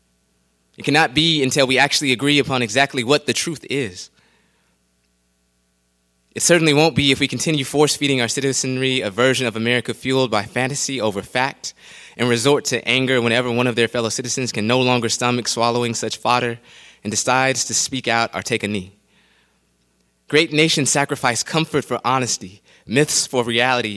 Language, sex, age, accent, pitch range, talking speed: English, male, 20-39, American, 95-130 Hz, 170 wpm